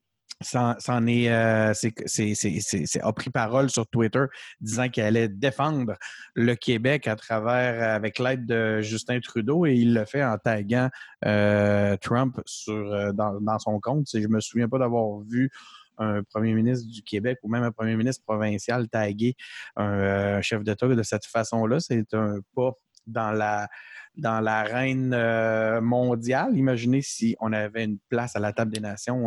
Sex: male